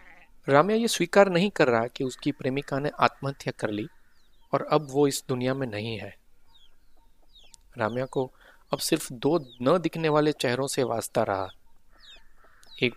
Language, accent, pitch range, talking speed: Hindi, native, 120-165 Hz, 155 wpm